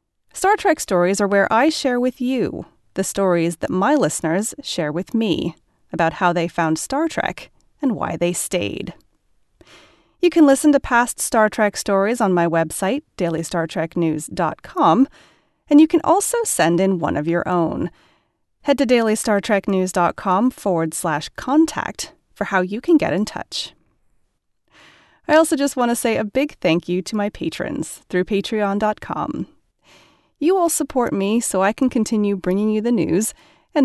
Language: English